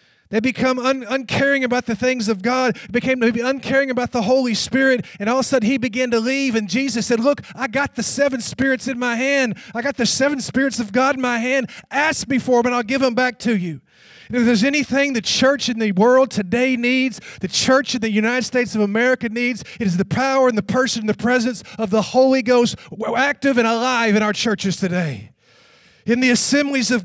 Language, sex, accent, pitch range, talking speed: English, male, American, 205-260 Hz, 220 wpm